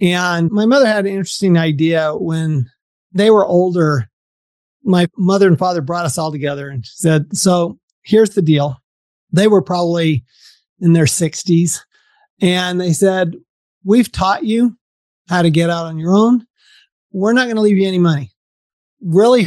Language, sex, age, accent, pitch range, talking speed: English, male, 40-59, American, 165-205 Hz, 165 wpm